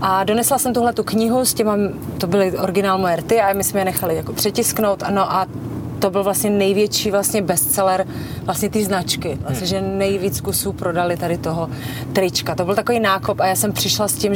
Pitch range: 165-200 Hz